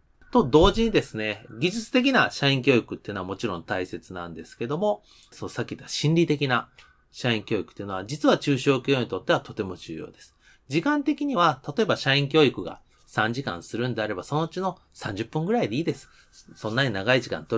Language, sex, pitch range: Japanese, male, 110-180 Hz